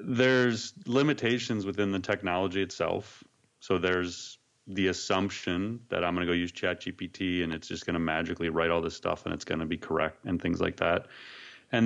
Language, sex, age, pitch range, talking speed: English, male, 30-49, 90-110 Hz, 195 wpm